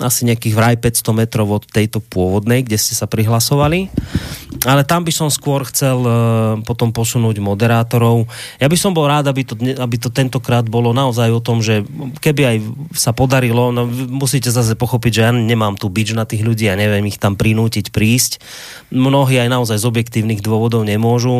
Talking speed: 185 wpm